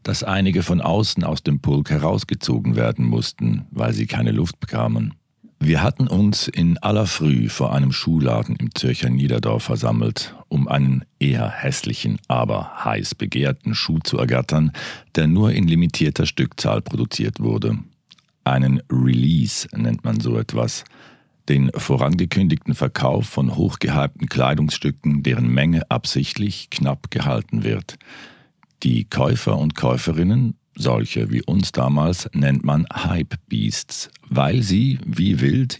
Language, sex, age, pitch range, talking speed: German, male, 50-69, 65-85 Hz, 130 wpm